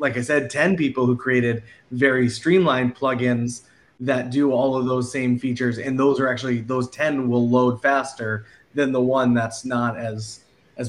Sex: male